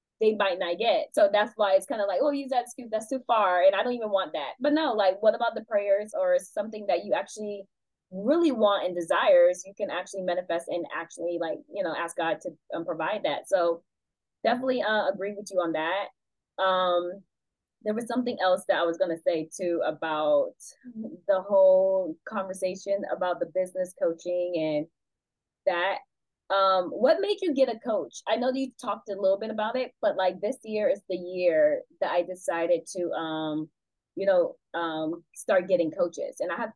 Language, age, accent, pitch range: English, 20-39, American, 180-255 Hz